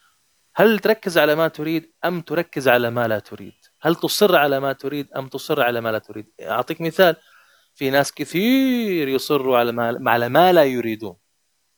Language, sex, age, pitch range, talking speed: Arabic, male, 20-39, 115-165 Hz, 175 wpm